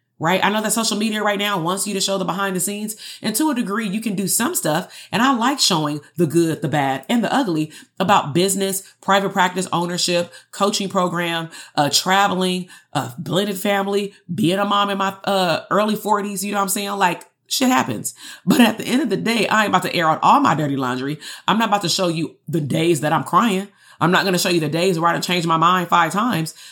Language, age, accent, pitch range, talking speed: English, 30-49, American, 160-205 Hz, 245 wpm